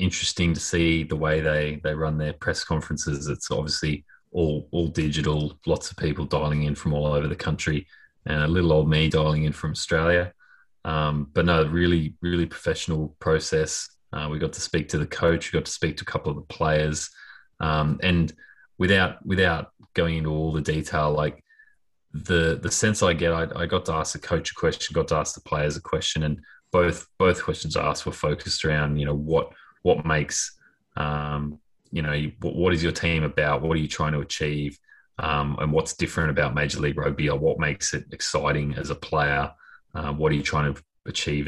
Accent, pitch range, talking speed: Australian, 75-85 Hz, 205 wpm